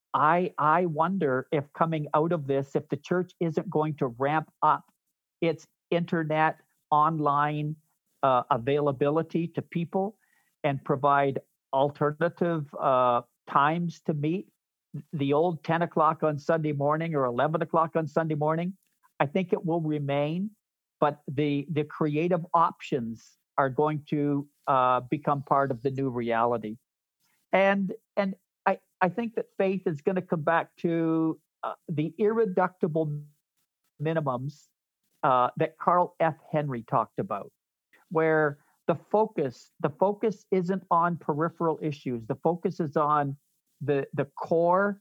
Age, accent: 50-69, American